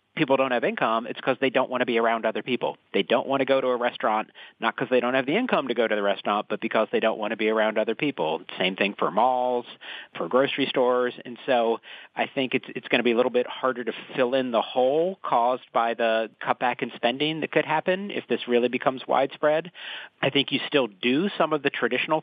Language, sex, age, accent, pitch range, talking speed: English, male, 40-59, American, 110-135 Hz, 250 wpm